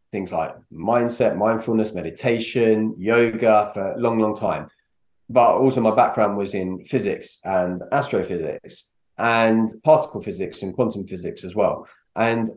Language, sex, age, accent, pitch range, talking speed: English, male, 30-49, British, 100-125 Hz, 140 wpm